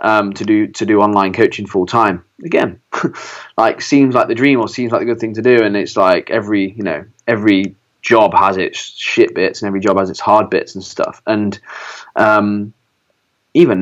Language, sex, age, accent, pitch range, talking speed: English, male, 20-39, British, 100-120 Hz, 200 wpm